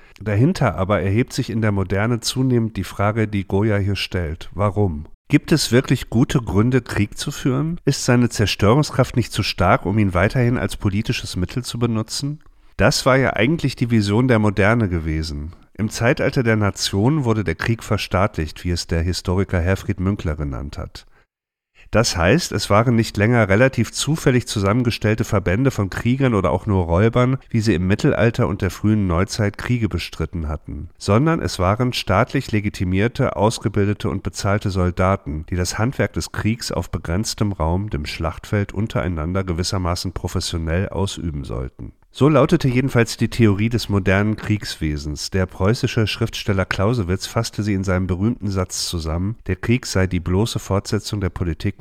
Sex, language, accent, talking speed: male, German, German, 160 wpm